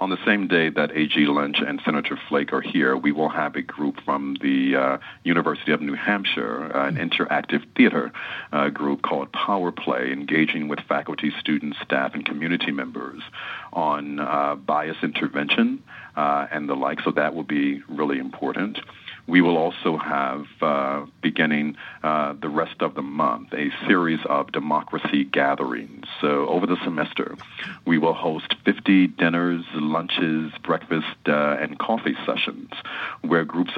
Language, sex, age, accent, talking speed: English, male, 40-59, American, 160 wpm